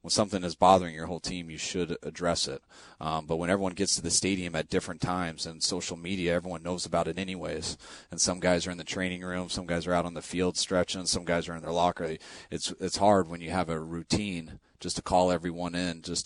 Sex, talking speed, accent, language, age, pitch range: male, 245 wpm, American, English, 30-49, 80-90 Hz